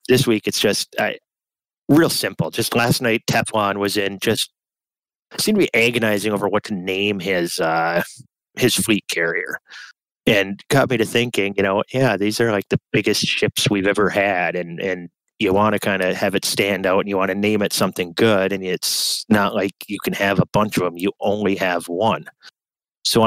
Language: English